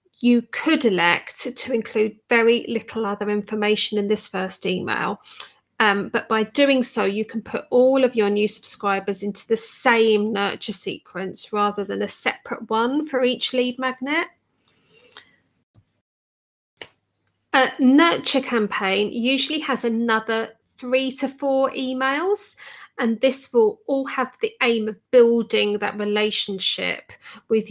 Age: 30-49